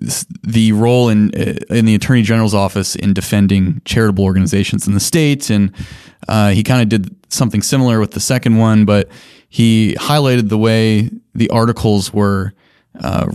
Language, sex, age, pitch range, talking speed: English, male, 20-39, 100-115 Hz, 160 wpm